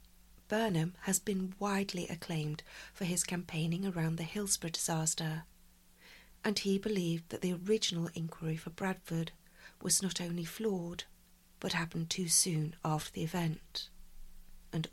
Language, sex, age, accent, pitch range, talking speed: English, female, 40-59, British, 160-190 Hz, 135 wpm